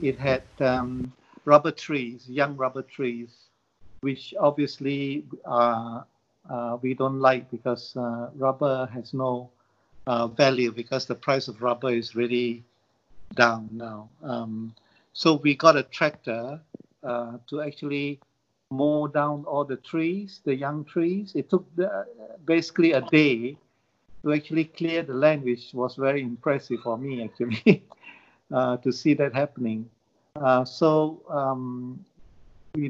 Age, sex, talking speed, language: 50-69, male, 135 wpm, English